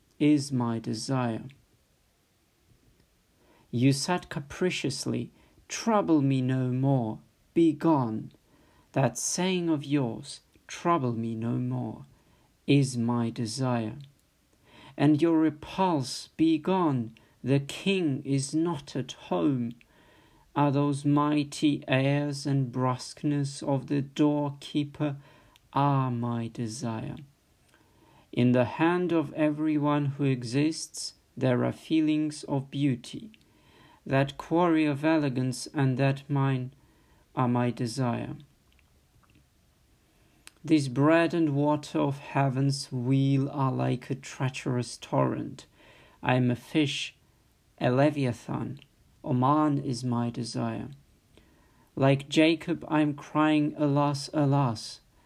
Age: 50-69